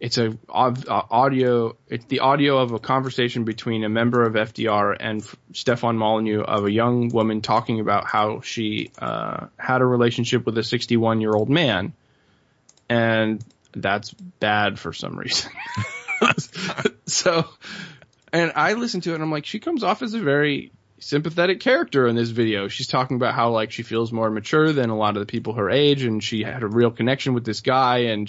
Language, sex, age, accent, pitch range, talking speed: English, male, 20-39, American, 110-145 Hz, 190 wpm